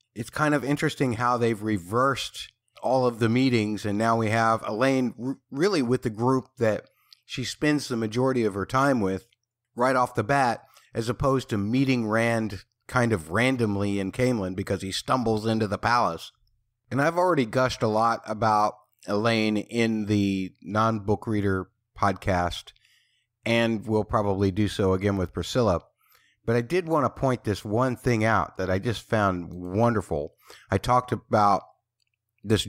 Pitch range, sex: 100-125 Hz, male